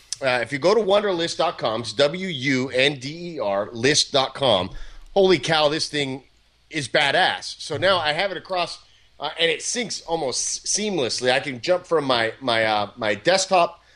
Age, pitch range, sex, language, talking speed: 30-49, 120-170 Hz, male, English, 155 wpm